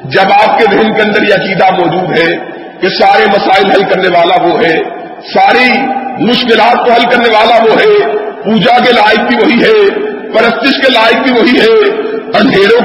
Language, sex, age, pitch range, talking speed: Urdu, male, 50-69, 215-255 Hz, 180 wpm